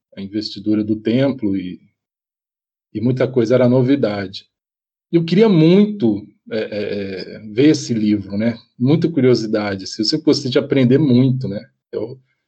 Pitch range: 110-145 Hz